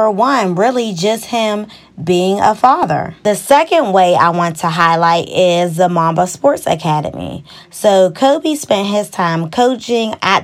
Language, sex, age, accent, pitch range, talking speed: English, female, 20-39, American, 175-215 Hz, 150 wpm